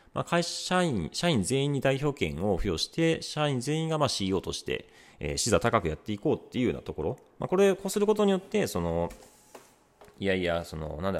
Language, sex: Japanese, male